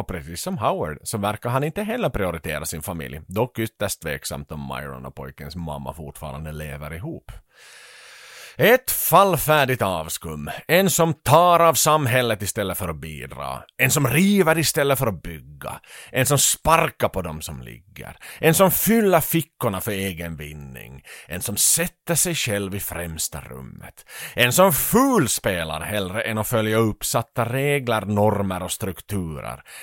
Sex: male